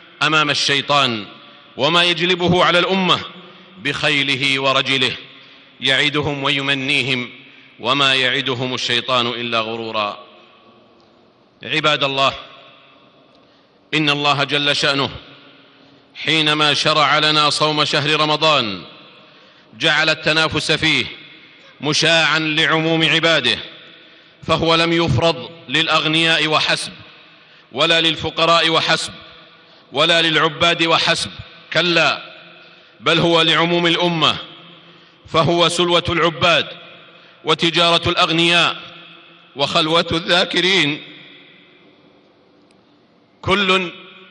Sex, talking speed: male, 75 wpm